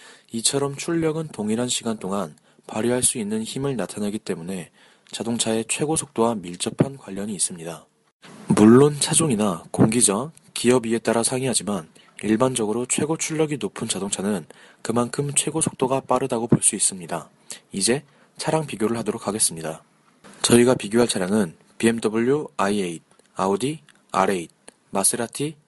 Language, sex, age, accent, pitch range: Korean, male, 20-39, native, 110-145 Hz